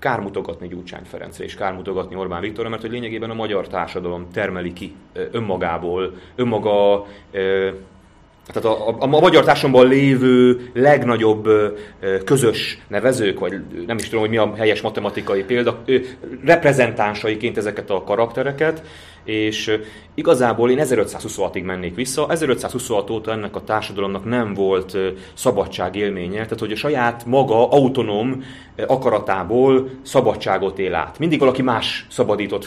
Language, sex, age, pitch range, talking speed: Hungarian, male, 30-49, 100-130 Hz, 130 wpm